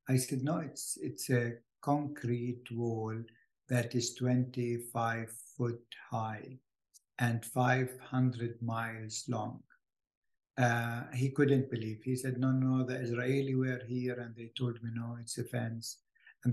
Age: 60-79